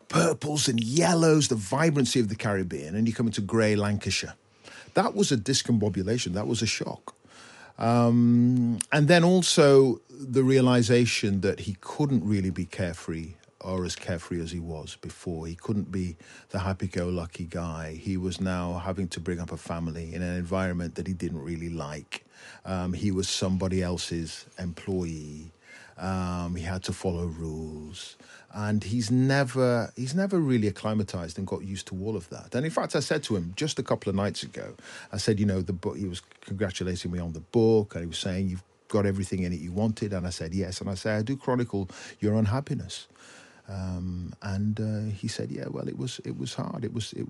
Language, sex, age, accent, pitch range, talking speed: English, male, 40-59, British, 90-115 Hz, 195 wpm